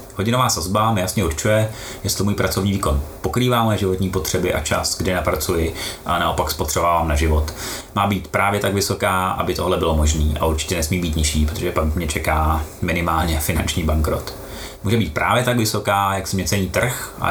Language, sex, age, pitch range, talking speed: Czech, male, 30-49, 80-100 Hz, 185 wpm